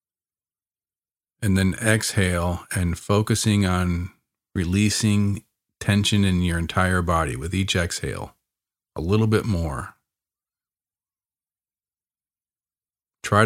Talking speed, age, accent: 90 wpm, 40-59, American